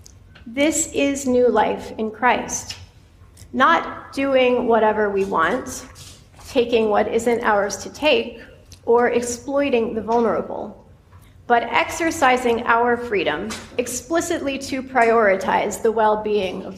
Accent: American